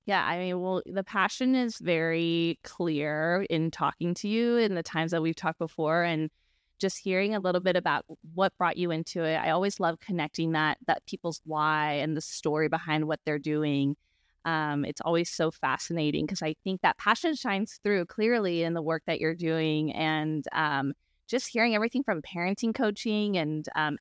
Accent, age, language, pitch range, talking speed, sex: American, 20-39, English, 160-210 Hz, 190 wpm, female